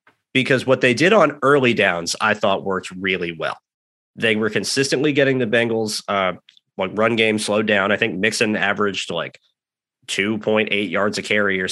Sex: male